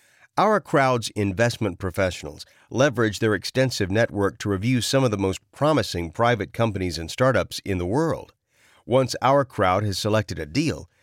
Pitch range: 100-135 Hz